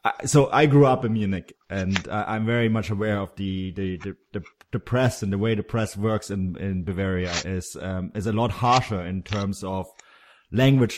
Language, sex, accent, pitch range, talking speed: English, male, German, 100-125 Hz, 200 wpm